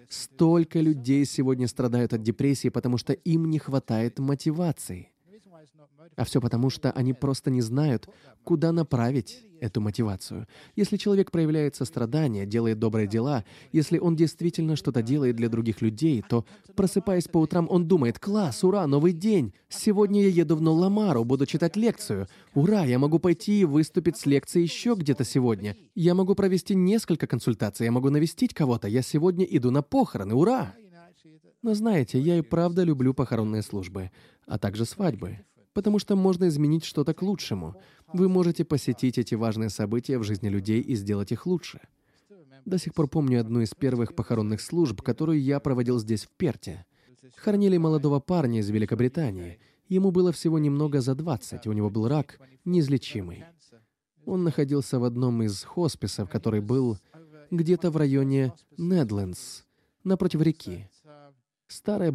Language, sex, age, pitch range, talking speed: Russian, male, 20-39, 120-170 Hz, 155 wpm